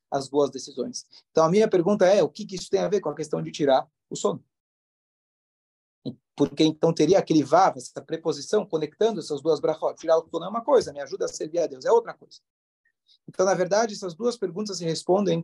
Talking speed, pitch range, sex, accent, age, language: 220 wpm, 155-215 Hz, male, Brazilian, 40-59, Portuguese